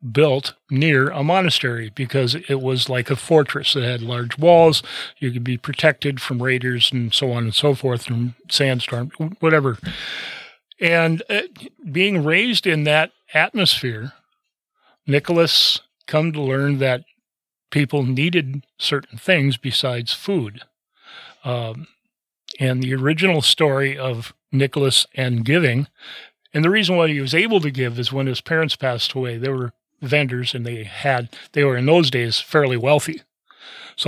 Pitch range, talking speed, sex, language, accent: 125-155 Hz, 150 wpm, male, English, American